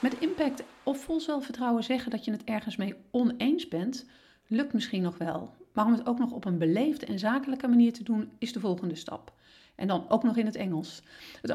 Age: 40-59